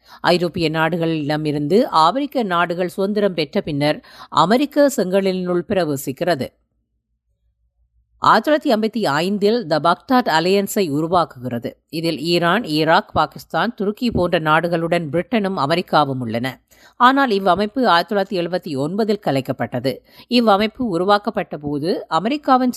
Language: Tamil